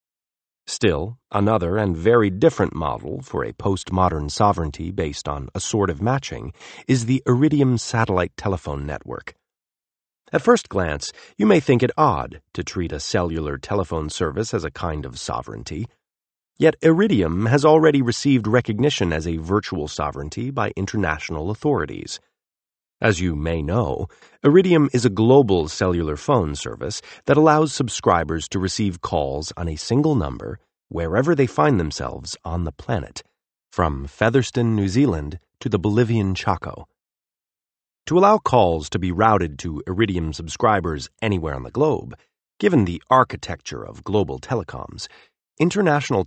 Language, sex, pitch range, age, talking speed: English, male, 80-125 Hz, 40-59, 145 wpm